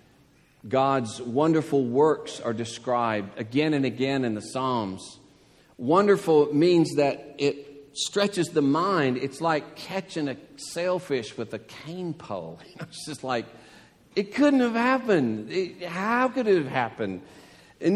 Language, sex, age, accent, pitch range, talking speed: English, male, 50-69, American, 140-215 Hz, 135 wpm